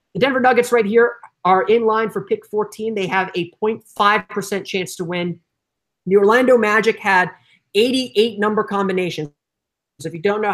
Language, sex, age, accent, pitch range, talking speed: English, male, 30-49, American, 185-215 Hz, 165 wpm